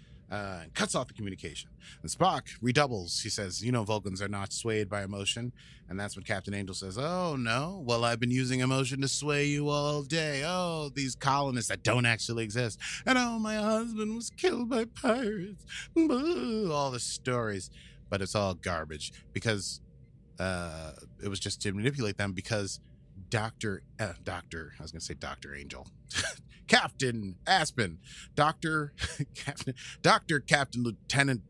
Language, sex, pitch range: English, male, 95-135 Hz